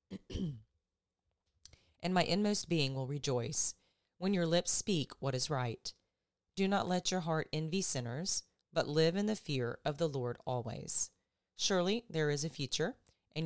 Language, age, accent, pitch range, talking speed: English, 30-49, American, 130-170 Hz, 155 wpm